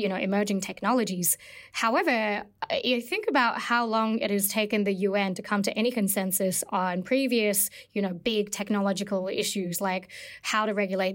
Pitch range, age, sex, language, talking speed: 190-220 Hz, 20-39, female, English, 165 wpm